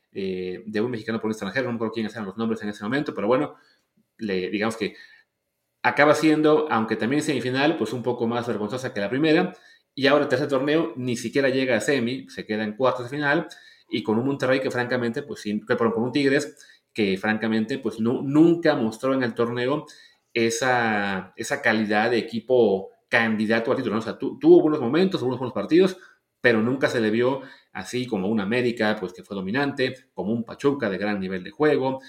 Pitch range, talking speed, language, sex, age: 110-155 Hz, 205 wpm, Spanish, male, 30-49